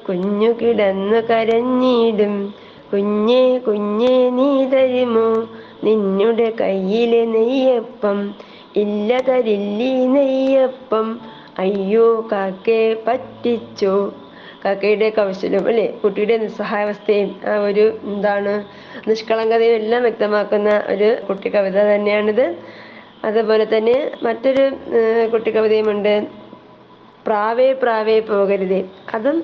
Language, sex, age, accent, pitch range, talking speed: Malayalam, female, 20-39, native, 210-250 Hz, 65 wpm